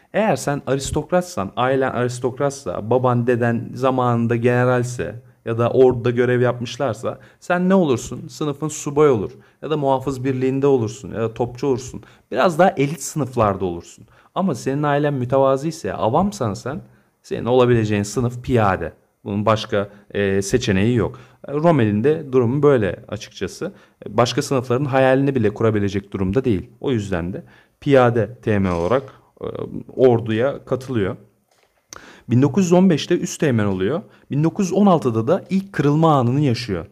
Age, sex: 40-59, male